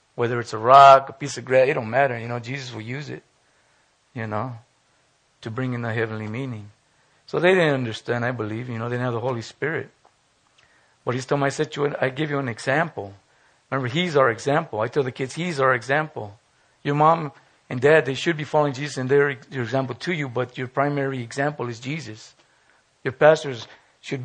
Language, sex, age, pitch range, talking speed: English, male, 50-69, 120-145 Hz, 210 wpm